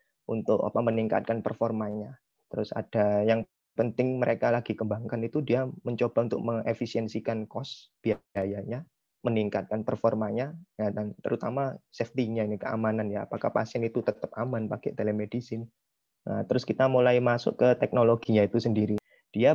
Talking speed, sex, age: 135 wpm, male, 20-39